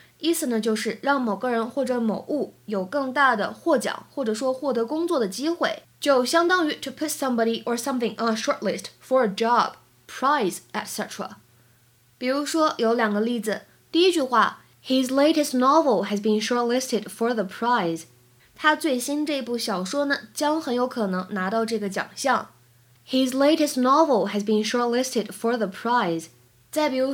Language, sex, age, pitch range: Chinese, female, 20-39, 210-275 Hz